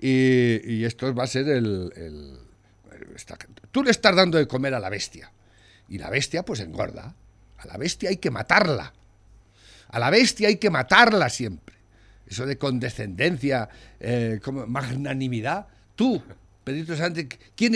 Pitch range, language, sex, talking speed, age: 110-165 Hz, Spanish, male, 155 wpm, 60-79